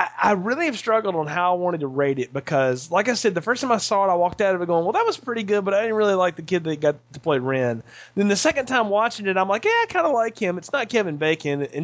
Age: 30-49